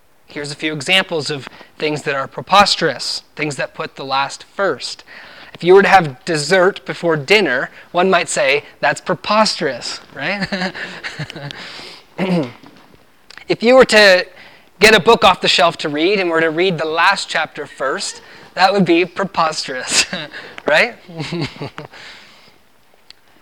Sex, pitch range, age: male, 160-195 Hz, 20-39